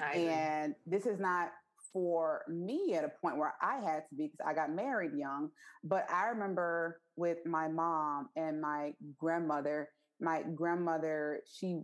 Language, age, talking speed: English, 20-39, 155 wpm